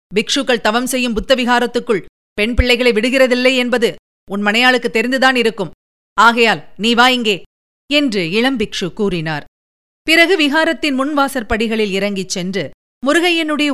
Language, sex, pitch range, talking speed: Tamil, female, 205-265 Hz, 105 wpm